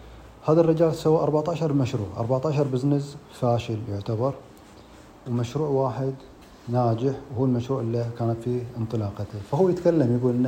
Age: 30-49